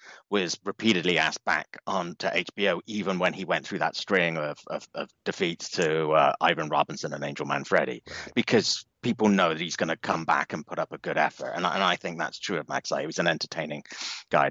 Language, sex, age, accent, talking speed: English, male, 30-49, British, 215 wpm